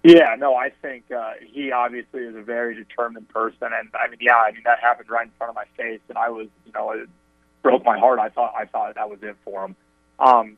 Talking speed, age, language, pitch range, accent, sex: 255 wpm, 30-49, English, 105-125 Hz, American, male